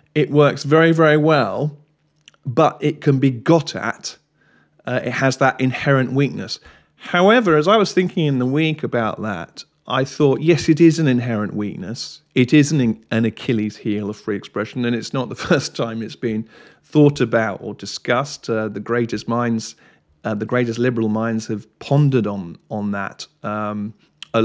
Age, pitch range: 40-59, 110-145 Hz